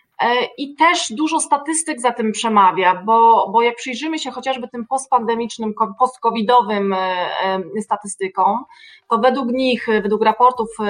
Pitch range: 205-245 Hz